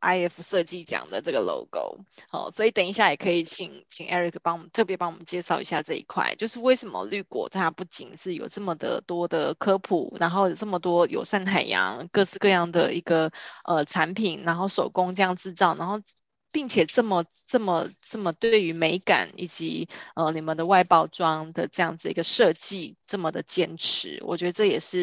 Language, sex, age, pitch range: Chinese, female, 20-39, 175-220 Hz